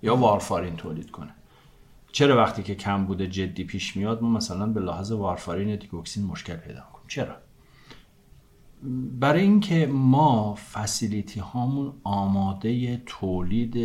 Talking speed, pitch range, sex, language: 125 wpm, 95-120 Hz, male, Persian